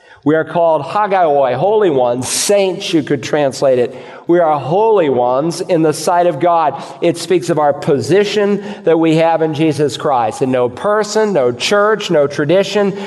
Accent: American